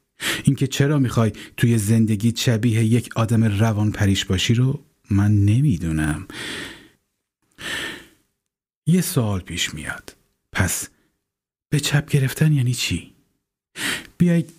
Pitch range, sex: 105-135 Hz, male